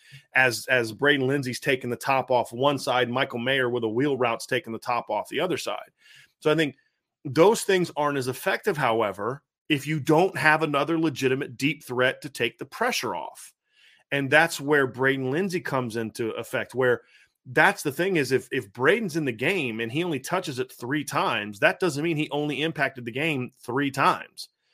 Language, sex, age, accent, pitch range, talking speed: English, male, 30-49, American, 130-155 Hz, 195 wpm